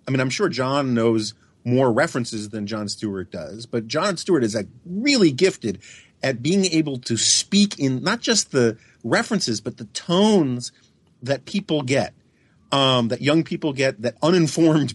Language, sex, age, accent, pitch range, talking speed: English, male, 50-69, American, 115-150 Hz, 170 wpm